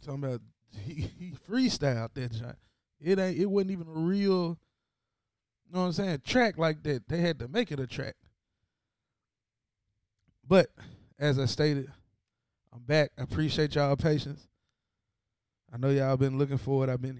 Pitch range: 110-145 Hz